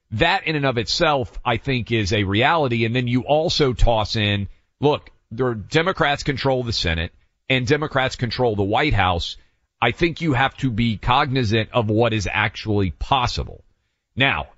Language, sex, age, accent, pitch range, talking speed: English, male, 40-59, American, 105-135 Hz, 175 wpm